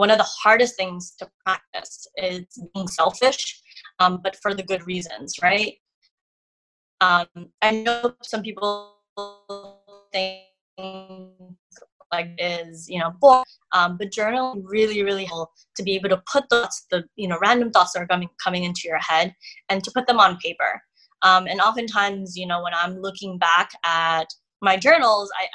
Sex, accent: female, American